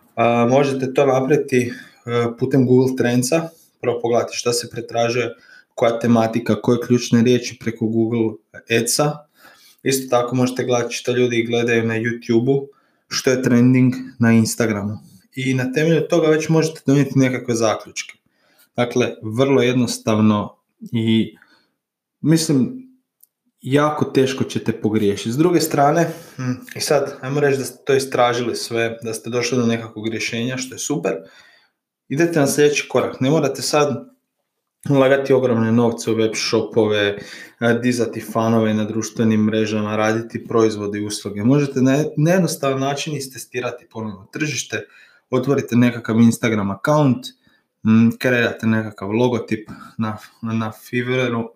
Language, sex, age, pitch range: Croatian, male, 20-39, 115-135 Hz